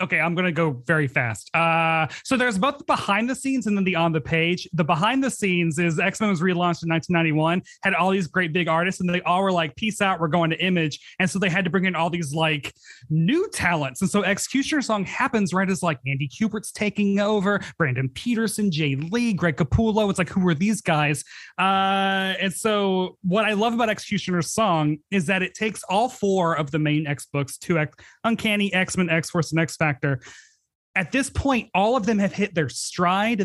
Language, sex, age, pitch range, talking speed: English, male, 30-49, 155-200 Hz, 215 wpm